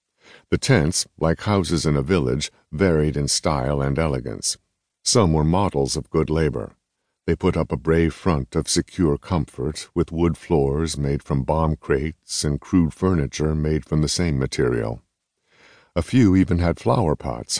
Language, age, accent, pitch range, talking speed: English, 60-79, American, 75-85 Hz, 165 wpm